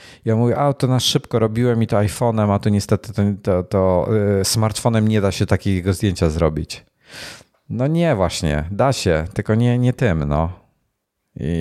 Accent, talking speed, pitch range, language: native, 175 wpm, 90-110 Hz, Polish